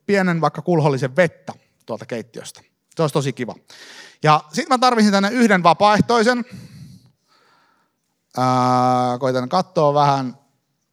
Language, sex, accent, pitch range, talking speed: Finnish, male, native, 135-215 Hz, 115 wpm